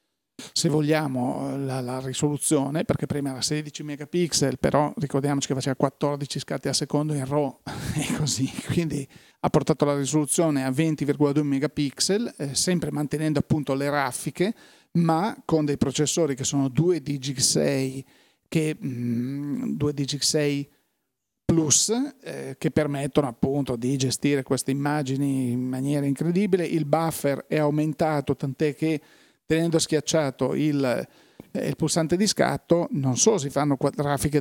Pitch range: 140-160 Hz